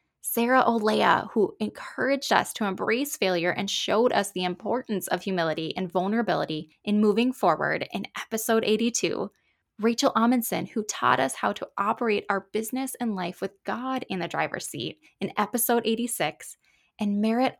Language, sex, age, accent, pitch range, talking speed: English, female, 10-29, American, 190-235 Hz, 155 wpm